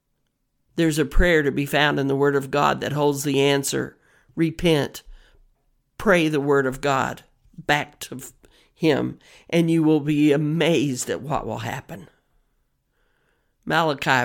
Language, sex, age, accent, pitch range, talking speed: English, male, 50-69, American, 140-170 Hz, 145 wpm